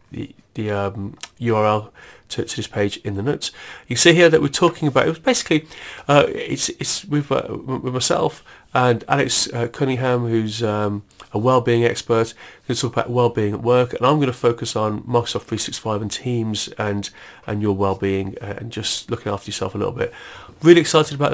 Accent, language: British, English